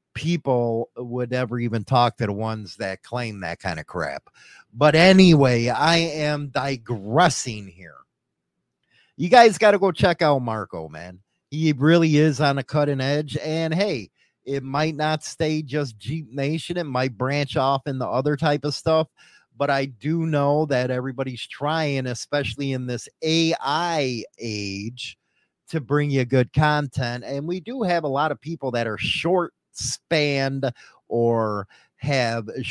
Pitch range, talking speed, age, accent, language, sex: 115-150 Hz, 160 wpm, 30-49, American, English, male